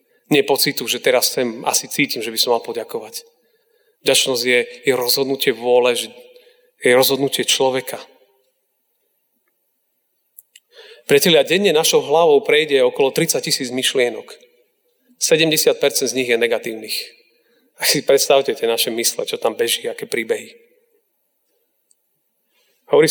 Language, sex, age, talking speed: Slovak, male, 40-59, 115 wpm